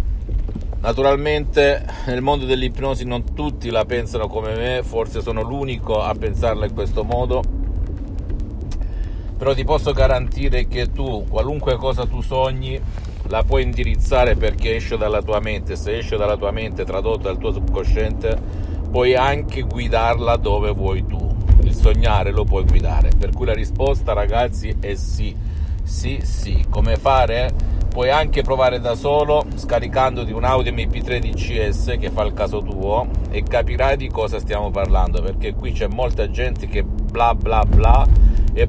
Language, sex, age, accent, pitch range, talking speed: Italian, male, 50-69, native, 90-115 Hz, 150 wpm